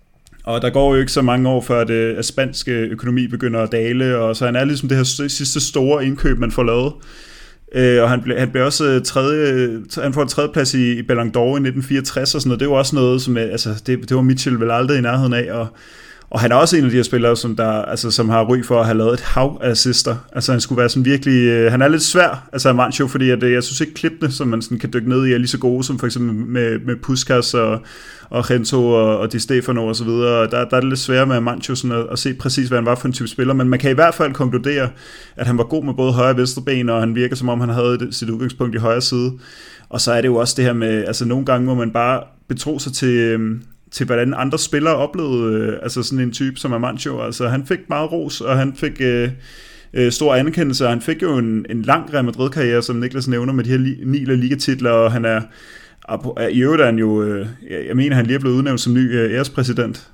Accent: native